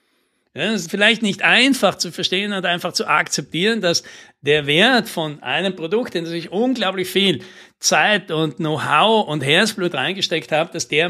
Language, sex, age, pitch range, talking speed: German, male, 60-79, 150-200 Hz, 175 wpm